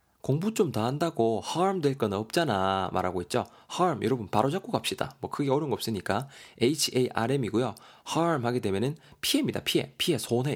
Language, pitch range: Korean, 105-150 Hz